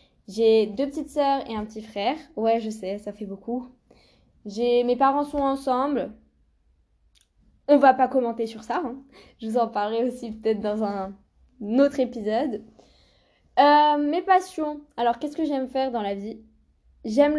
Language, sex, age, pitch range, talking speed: French, female, 10-29, 225-275 Hz, 165 wpm